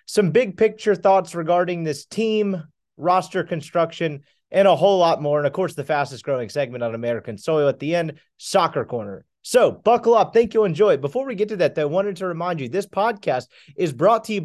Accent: American